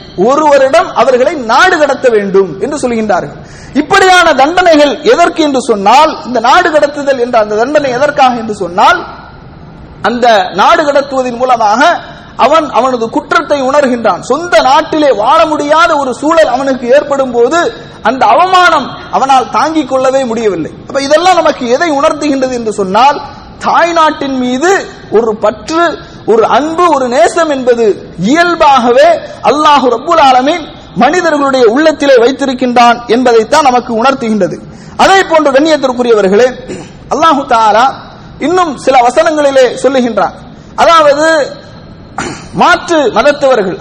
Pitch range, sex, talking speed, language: 250-320 Hz, male, 130 wpm, English